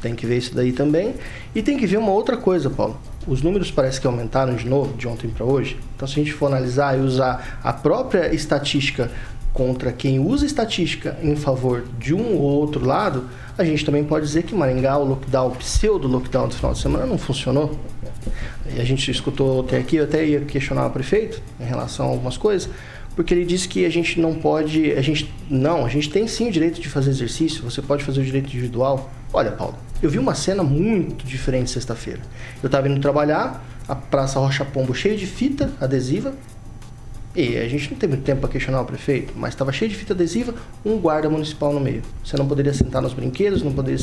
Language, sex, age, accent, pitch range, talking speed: Portuguese, male, 20-39, Brazilian, 130-165 Hz, 215 wpm